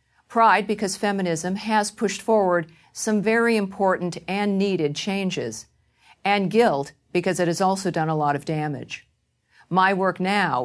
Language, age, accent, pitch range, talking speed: English, 50-69, American, 165-210 Hz, 145 wpm